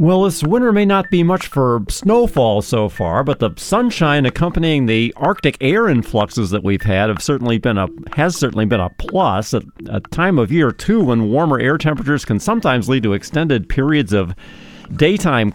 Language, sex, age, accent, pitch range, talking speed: English, male, 50-69, American, 110-165 Hz, 190 wpm